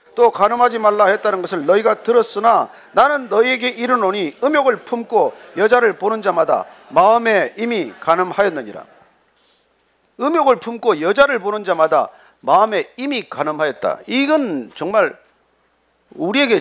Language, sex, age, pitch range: Korean, male, 40-59, 185-305 Hz